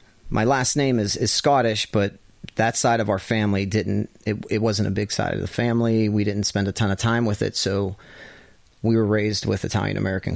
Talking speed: 220 wpm